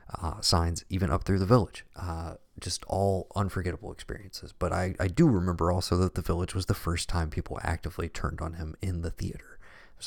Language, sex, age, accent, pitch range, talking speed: English, male, 30-49, American, 85-105 Hz, 210 wpm